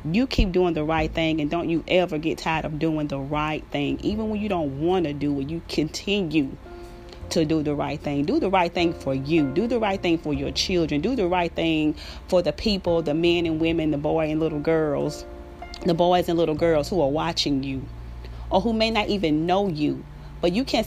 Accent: American